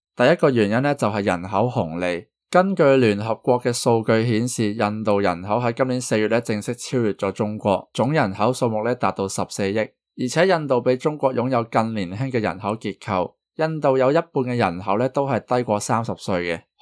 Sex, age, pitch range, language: male, 20-39, 100-130 Hz, Chinese